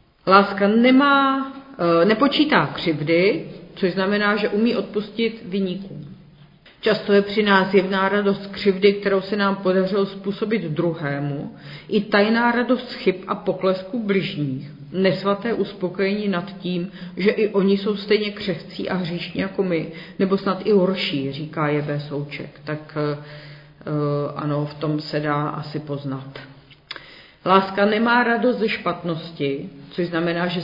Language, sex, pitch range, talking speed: Czech, female, 155-195 Hz, 130 wpm